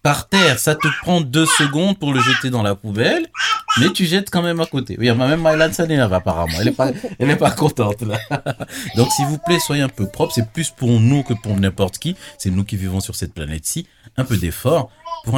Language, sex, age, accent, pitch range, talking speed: French, male, 30-49, French, 100-145 Hz, 240 wpm